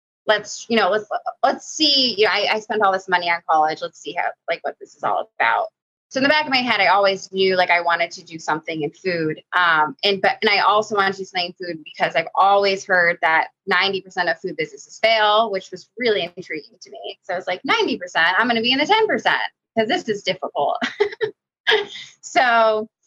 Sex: female